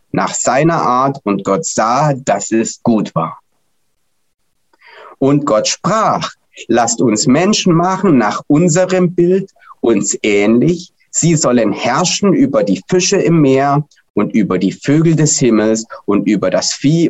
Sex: male